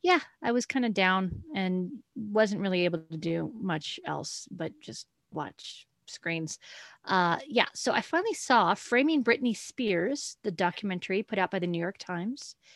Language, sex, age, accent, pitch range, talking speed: English, female, 40-59, American, 170-225 Hz, 170 wpm